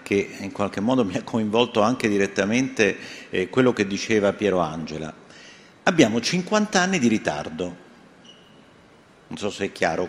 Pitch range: 100-135 Hz